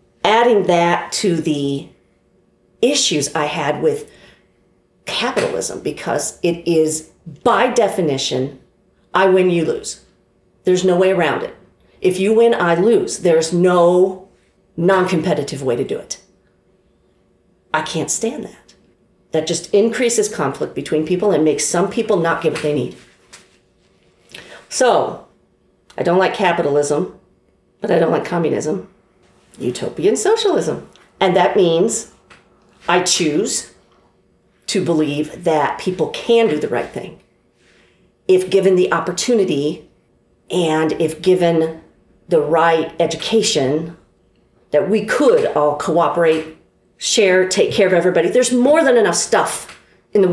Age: 40-59